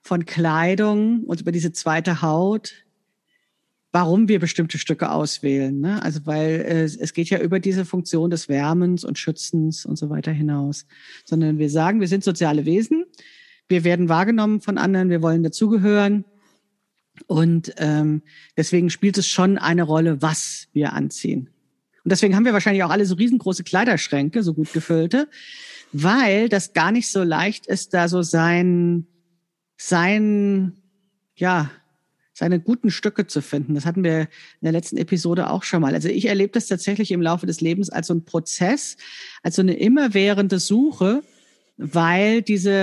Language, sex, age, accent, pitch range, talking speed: German, female, 40-59, German, 165-200 Hz, 160 wpm